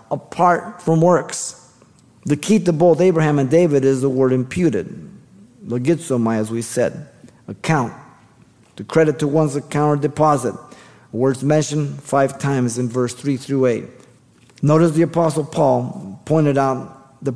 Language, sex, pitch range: English, male, 120-150 Hz